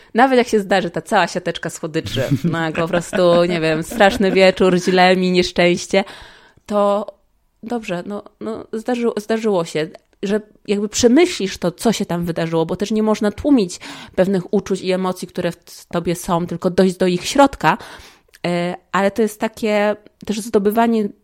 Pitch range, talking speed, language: 175-220 Hz, 165 wpm, Polish